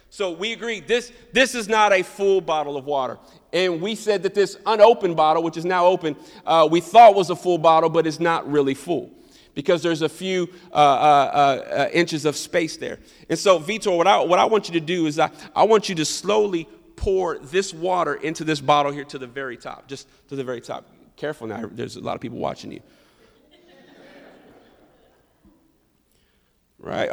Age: 40-59